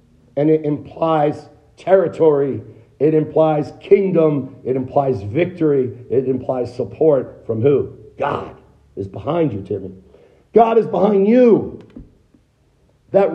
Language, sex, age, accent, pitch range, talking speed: English, male, 50-69, American, 120-170 Hz, 110 wpm